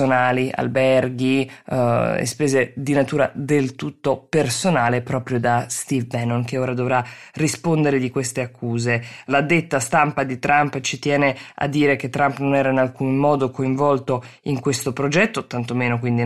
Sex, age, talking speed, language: female, 20-39, 160 wpm, Italian